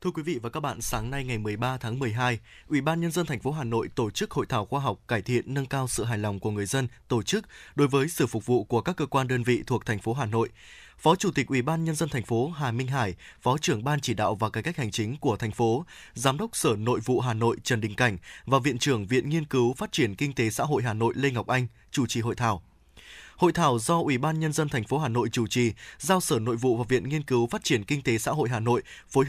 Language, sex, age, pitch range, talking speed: Vietnamese, male, 20-39, 120-155 Hz, 285 wpm